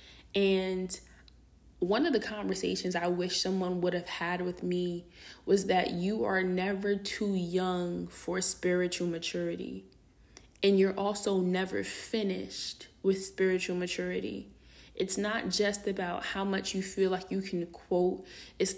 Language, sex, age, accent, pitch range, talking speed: English, female, 20-39, American, 175-195 Hz, 140 wpm